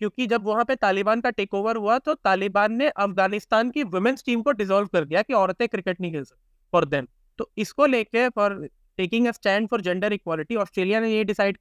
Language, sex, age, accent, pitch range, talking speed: Hindi, male, 20-39, native, 180-235 Hz, 210 wpm